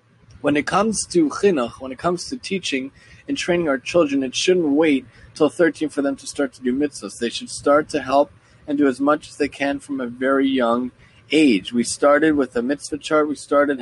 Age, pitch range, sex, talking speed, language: 30-49, 125-165 Hz, male, 220 wpm, English